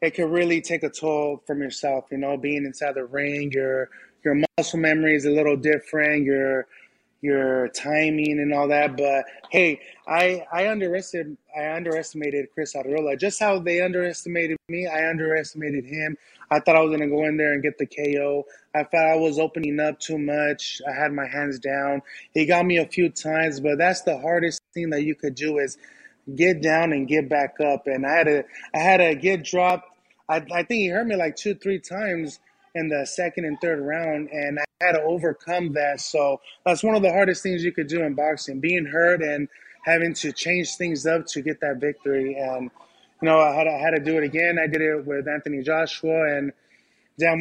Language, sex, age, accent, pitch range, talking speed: English, male, 20-39, American, 145-165 Hz, 210 wpm